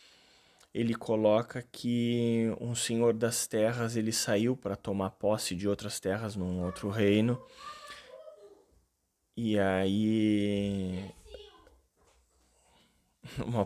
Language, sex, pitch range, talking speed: Portuguese, male, 100-115 Hz, 90 wpm